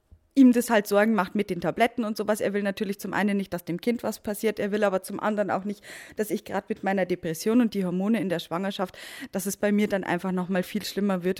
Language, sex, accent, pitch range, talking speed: German, female, German, 175-210 Hz, 265 wpm